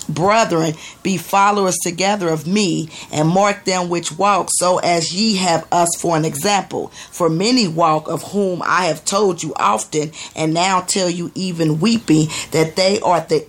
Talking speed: 175 wpm